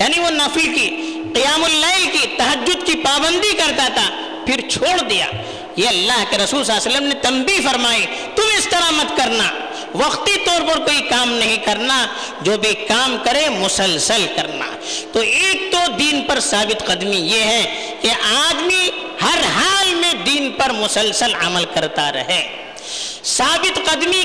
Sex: female